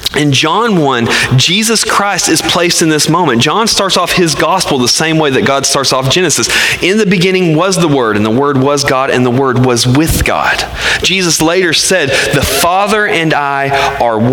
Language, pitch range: English, 125-170 Hz